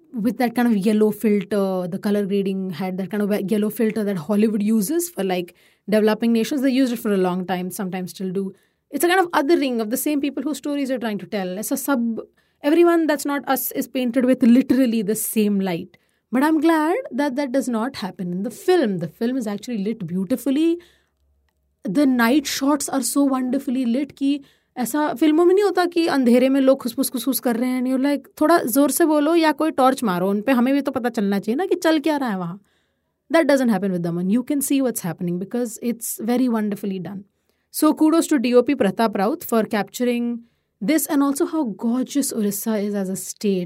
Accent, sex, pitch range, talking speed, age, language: Indian, female, 205-285 Hz, 175 wpm, 30-49, English